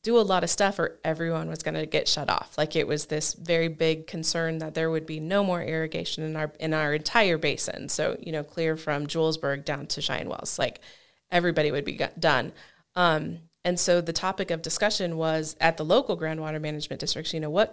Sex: female